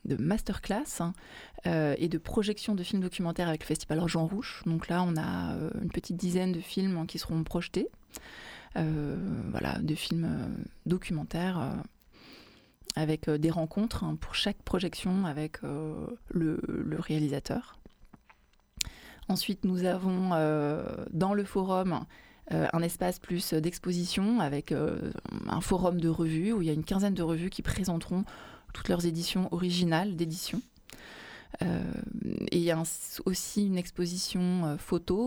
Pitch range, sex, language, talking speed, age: 160-190 Hz, female, French, 155 wpm, 20-39